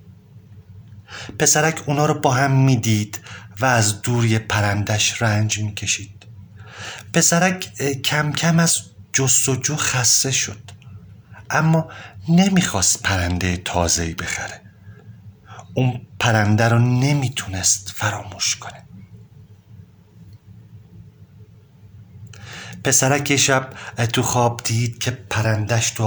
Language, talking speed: Persian, 90 wpm